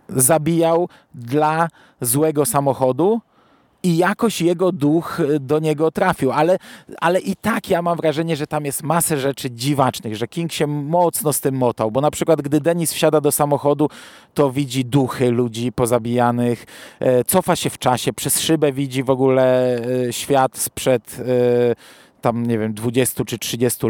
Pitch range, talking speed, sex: 130-170 Hz, 155 wpm, male